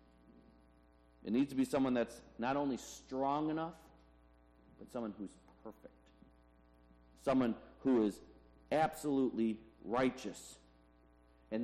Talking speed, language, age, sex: 105 wpm, English, 40-59, male